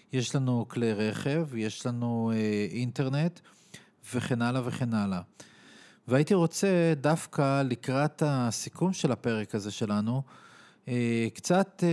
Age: 40-59